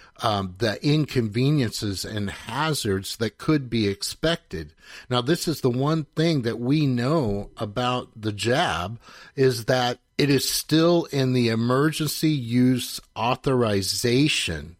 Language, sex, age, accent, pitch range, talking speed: English, male, 50-69, American, 105-135 Hz, 125 wpm